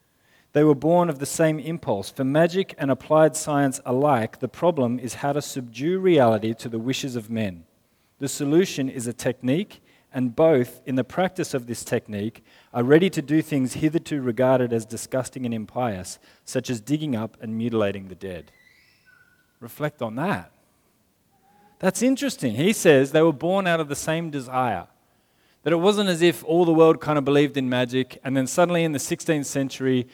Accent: Australian